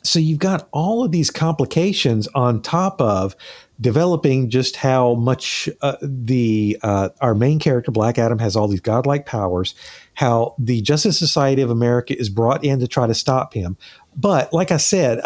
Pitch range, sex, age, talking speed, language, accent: 120-160 Hz, male, 50-69, 175 wpm, English, American